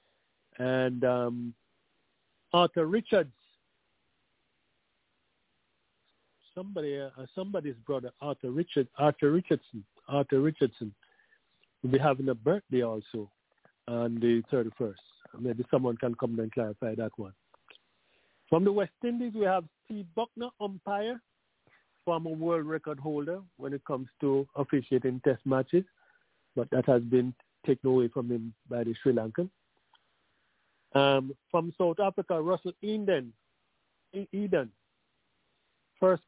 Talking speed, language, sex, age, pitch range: 120 wpm, English, male, 50-69, 125-170 Hz